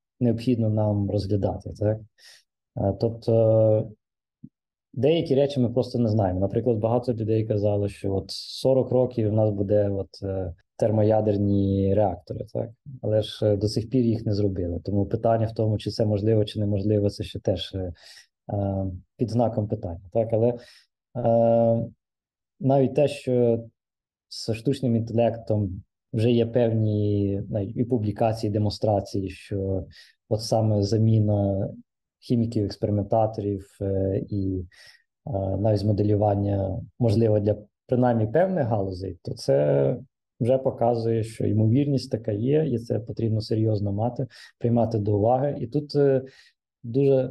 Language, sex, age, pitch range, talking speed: Ukrainian, male, 20-39, 105-120 Hz, 125 wpm